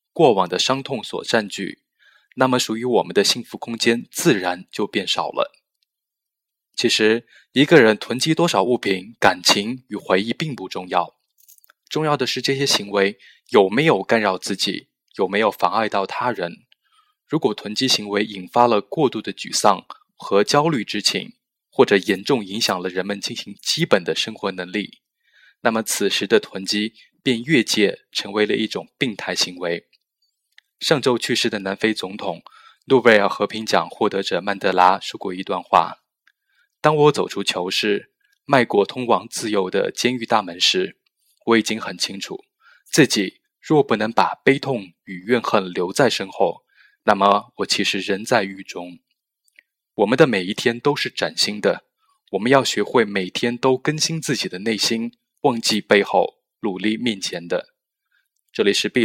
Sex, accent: male, native